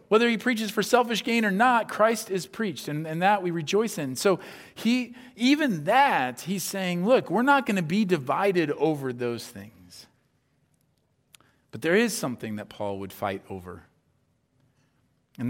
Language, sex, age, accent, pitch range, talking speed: English, male, 40-59, American, 115-175 Hz, 165 wpm